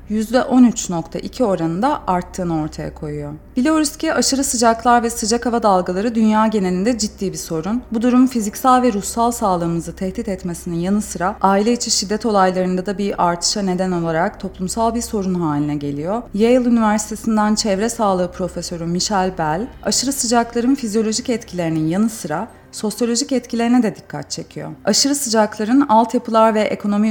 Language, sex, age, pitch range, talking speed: Turkish, female, 30-49, 175-230 Hz, 140 wpm